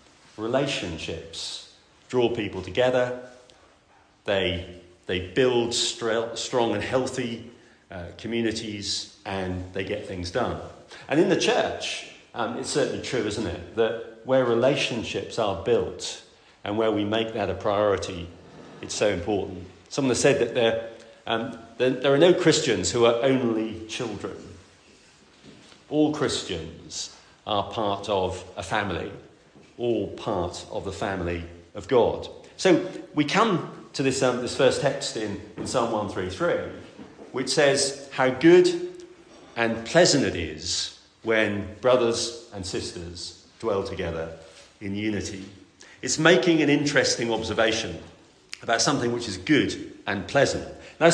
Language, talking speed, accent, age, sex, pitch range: English, 130 wpm, British, 40-59, male, 100-130 Hz